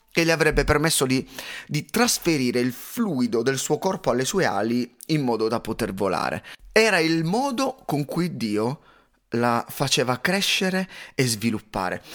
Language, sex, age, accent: Italian, male, 30-49, native